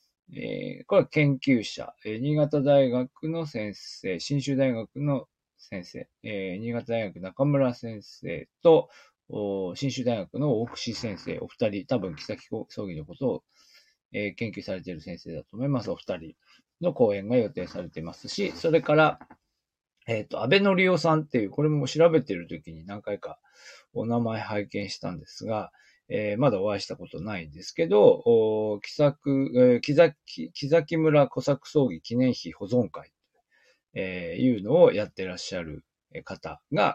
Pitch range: 110-150 Hz